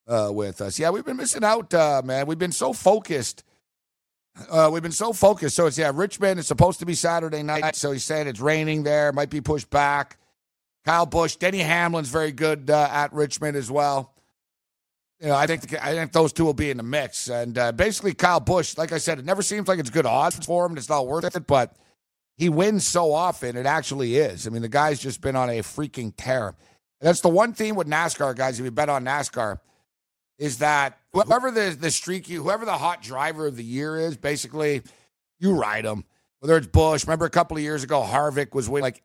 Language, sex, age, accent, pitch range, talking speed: English, male, 50-69, American, 135-170 Hz, 225 wpm